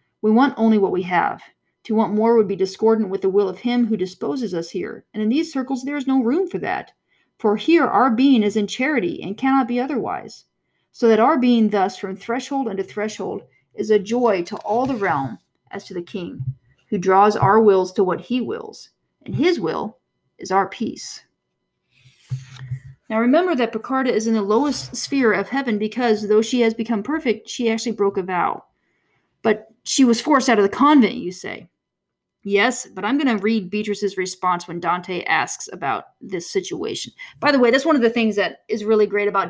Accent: American